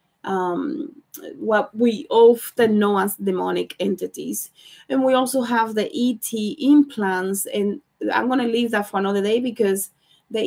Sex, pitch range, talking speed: female, 200-250 Hz, 150 wpm